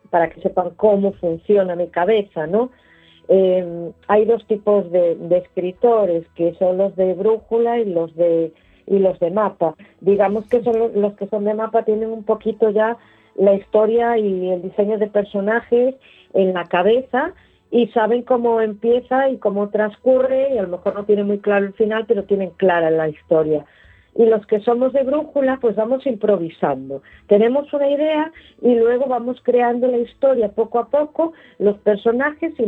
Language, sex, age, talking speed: Spanish, female, 40-59, 175 wpm